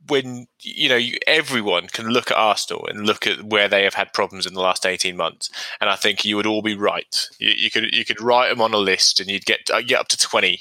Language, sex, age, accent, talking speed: English, male, 20-39, British, 270 wpm